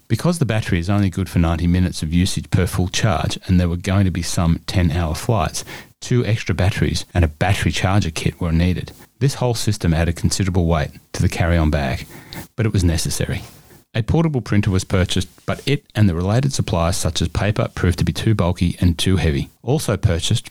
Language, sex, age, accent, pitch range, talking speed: English, male, 30-49, Australian, 85-110 Hz, 210 wpm